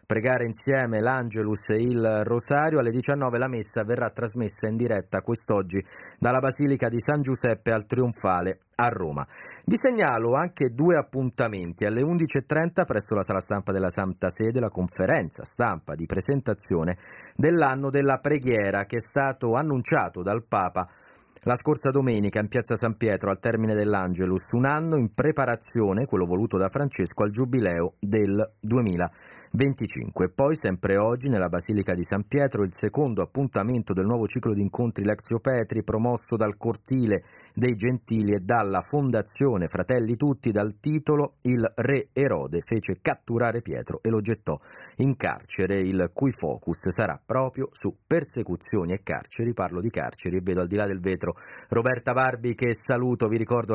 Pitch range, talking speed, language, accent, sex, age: 100-130 Hz, 155 wpm, Italian, native, male, 30-49